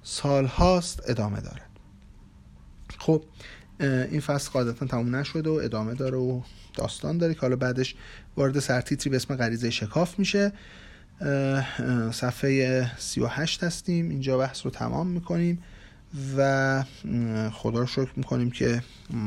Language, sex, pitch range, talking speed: Persian, male, 115-140 Hz, 135 wpm